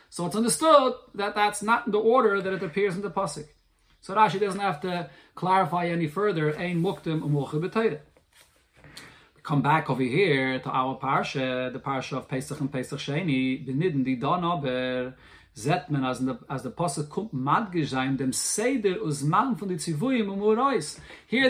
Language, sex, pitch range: English, male, 145-200 Hz